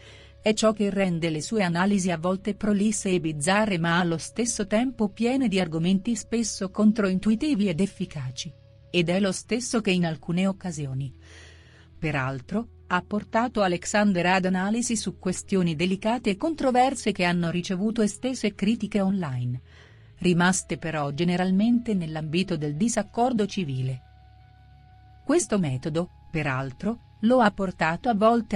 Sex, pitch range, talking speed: female, 165-210 Hz, 130 wpm